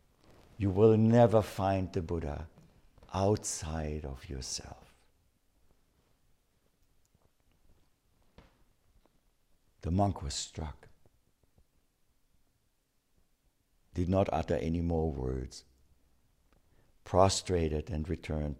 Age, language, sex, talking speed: 60-79, English, male, 70 wpm